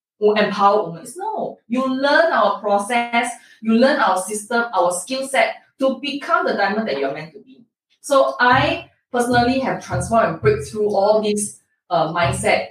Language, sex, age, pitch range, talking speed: English, female, 20-39, 200-265 Hz, 170 wpm